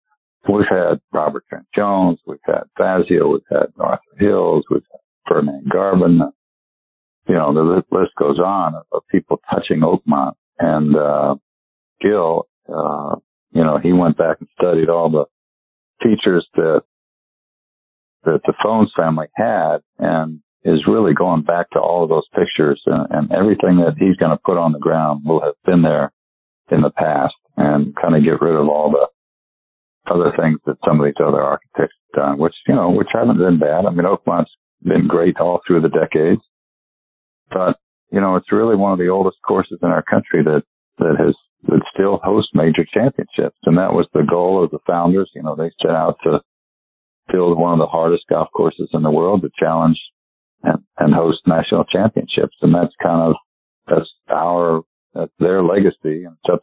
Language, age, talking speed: English, 50-69, 180 wpm